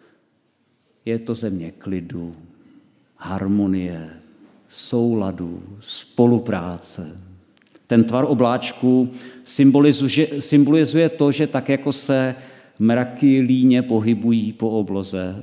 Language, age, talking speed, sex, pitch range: Czech, 50-69, 80 wpm, male, 105-130 Hz